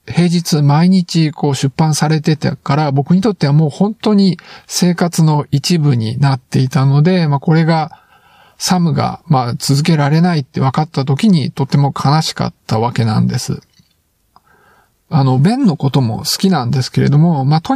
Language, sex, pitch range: Japanese, male, 135-180 Hz